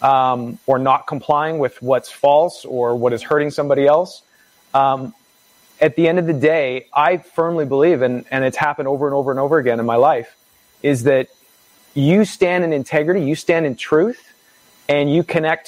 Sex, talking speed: male, 190 wpm